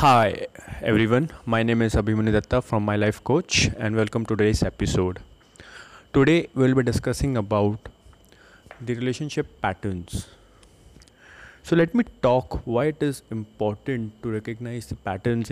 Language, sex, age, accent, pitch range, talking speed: English, male, 20-39, Indian, 105-130 Hz, 140 wpm